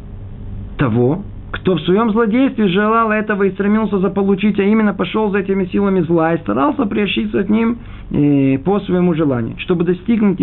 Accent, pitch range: native, 135-200 Hz